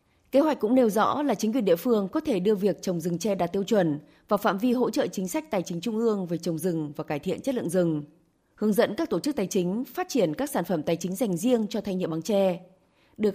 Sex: female